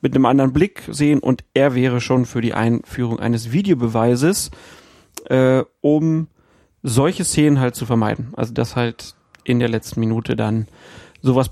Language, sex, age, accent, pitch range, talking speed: German, male, 40-59, German, 125-155 Hz, 155 wpm